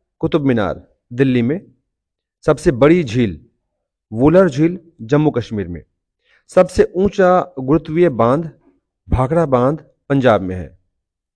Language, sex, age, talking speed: Hindi, male, 40-59, 110 wpm